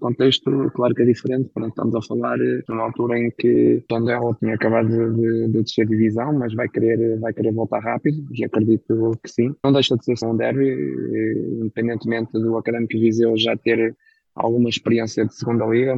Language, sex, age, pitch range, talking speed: Portuguese, male, 20-39, 115-125 Hz, 185 wpm